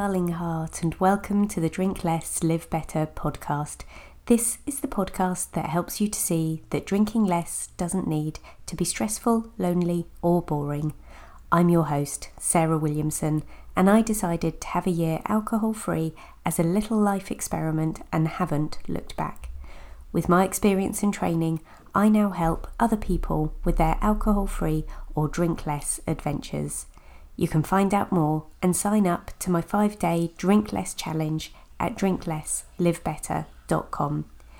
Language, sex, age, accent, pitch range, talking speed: English, female, 30-49, British, 155-200 Hz, 155 wpm